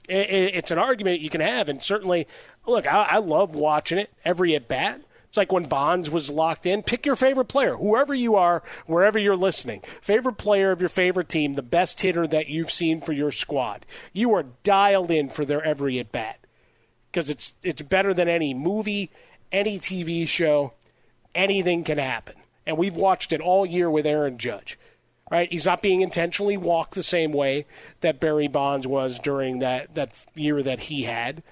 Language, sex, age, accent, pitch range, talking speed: English, male, 40-59, American, 145-190 Hz, 185 wpm